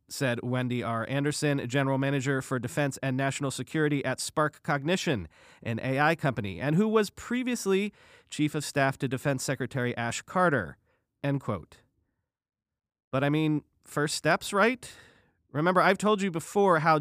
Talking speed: 150 wpm